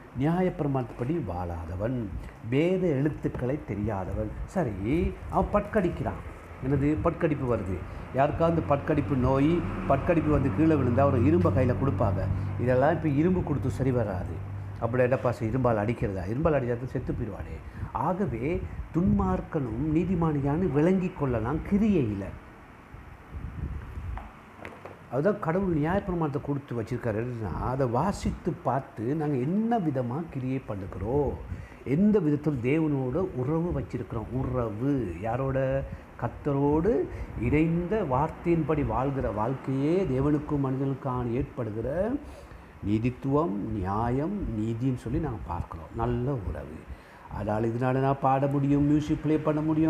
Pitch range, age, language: 110-155 Hz, 60-79, Tamil